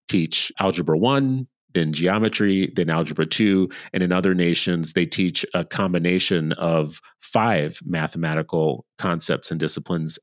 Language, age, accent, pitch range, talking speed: English, 30-49, American, 85-105 Hz, 130 wpm